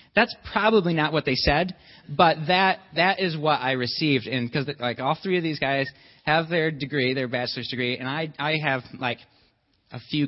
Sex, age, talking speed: male, 30-49, 200 wpm